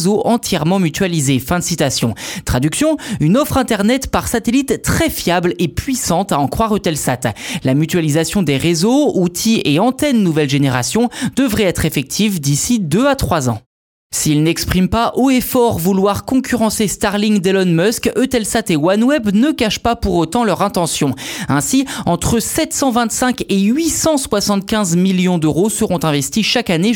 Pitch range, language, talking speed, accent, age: 160-230 Hz, French, 150 wpm, French, 20-39